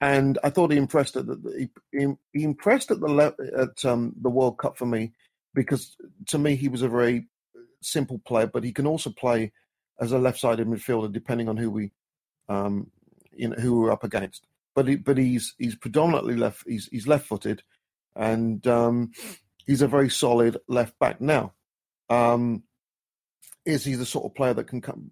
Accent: British